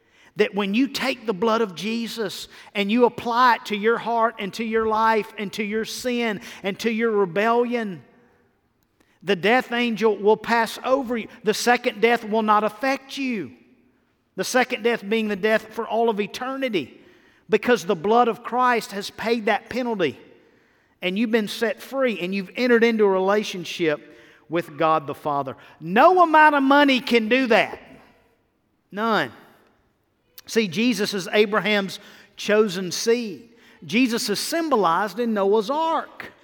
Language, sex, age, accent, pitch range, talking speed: English, male, 50-69, American, 200-245 Hz, 155 wpm